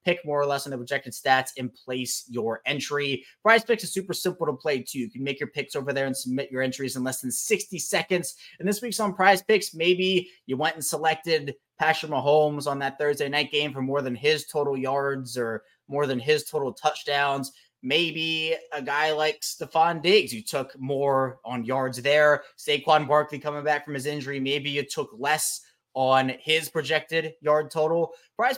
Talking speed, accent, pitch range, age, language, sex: 200 wpm, American, 130-160 Hz, 20-39, English, male